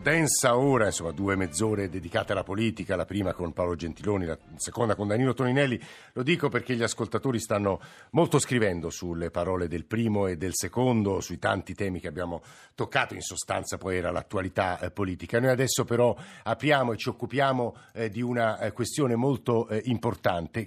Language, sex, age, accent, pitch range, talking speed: Italian, male, 50-69, native, 100-130 Hz, 170 wpm